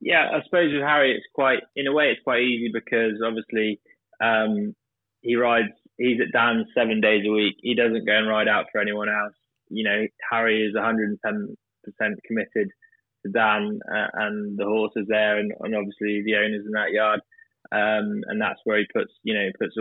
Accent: British